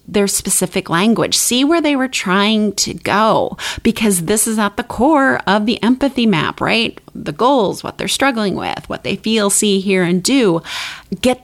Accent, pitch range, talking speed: American, 165-220 Hz, 185 wpm